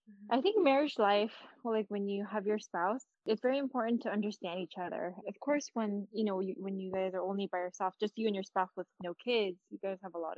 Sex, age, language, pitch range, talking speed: female, 10-29, English, 190-235 Hz, 265 wpm